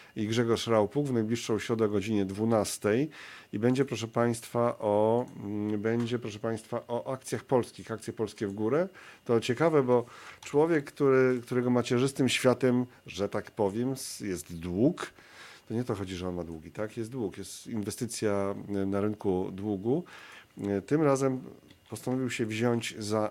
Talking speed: 150 wpm